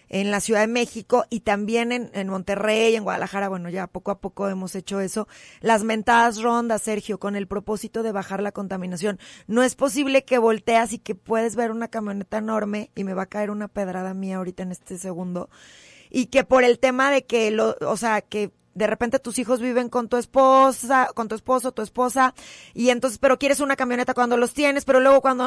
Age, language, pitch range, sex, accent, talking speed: 30-49, Spanish, 200-250 Hz, female, Mexican, 215 wpm